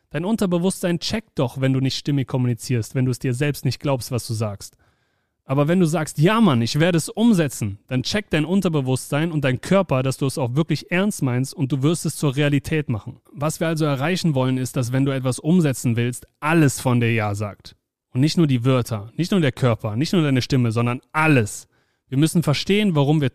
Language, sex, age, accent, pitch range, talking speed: German, male, 30-49, German, 125-165 Hz, 225 wpm